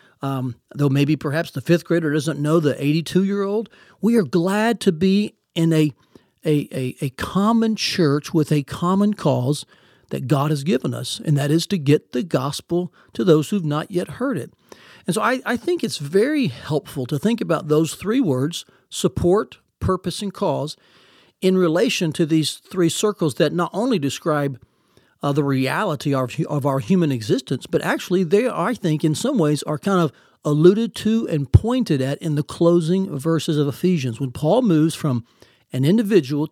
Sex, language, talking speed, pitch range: male, English, 175 wpm, 145-185 Hz